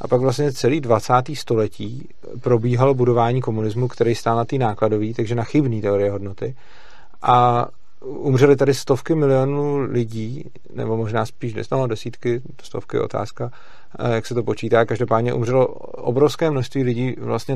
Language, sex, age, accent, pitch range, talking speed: Czech, male, 40-59, native, 115-140 Hz, 145 wpm